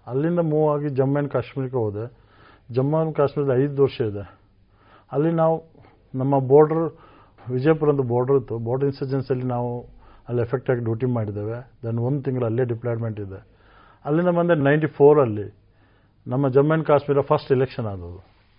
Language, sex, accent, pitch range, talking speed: Kannada, male, native, 115-145 Hz, 150 wpm